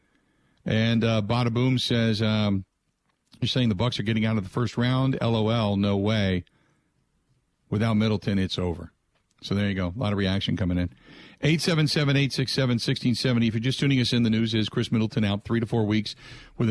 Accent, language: American, English